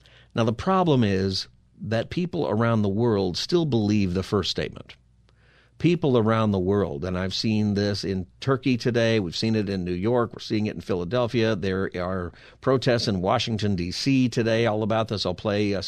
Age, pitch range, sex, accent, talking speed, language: 50-69, 100-125 Hz, male, American, 185 wpm, English